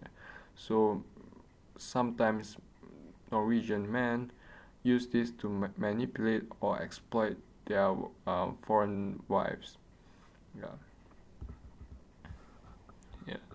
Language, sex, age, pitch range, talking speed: English, male, 20-39, 95-115 Hz, 75 wpm